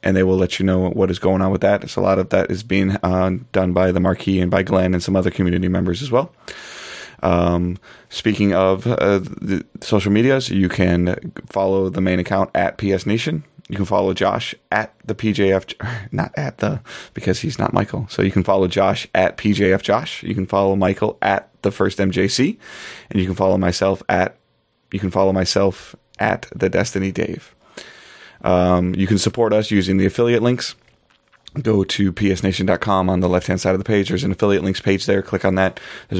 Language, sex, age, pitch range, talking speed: English, male, 30-49, 90-100 Hz, 205 wpm